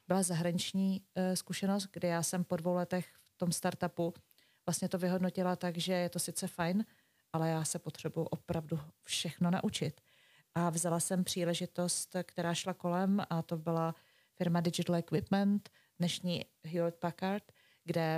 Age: 30-49